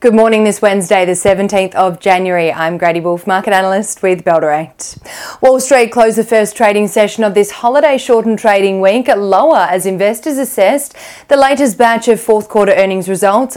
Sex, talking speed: female, 185 wpm